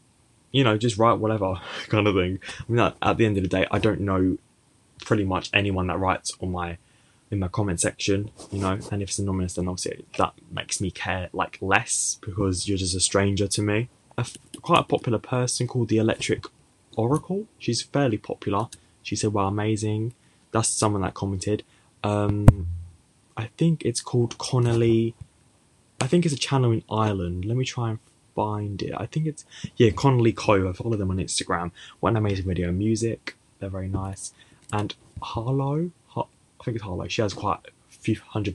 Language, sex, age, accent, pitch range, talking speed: English, male, 10-29, British, 95-120 Hz, 190 wpm